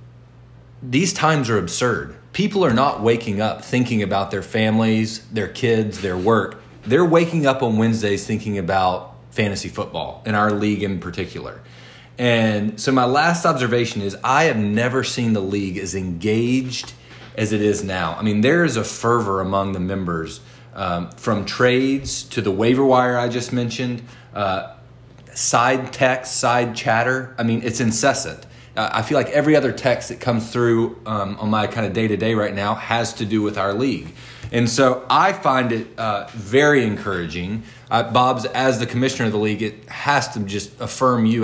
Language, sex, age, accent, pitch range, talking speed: English, male, 30-49, American, 105-125 Hz, 180 wpm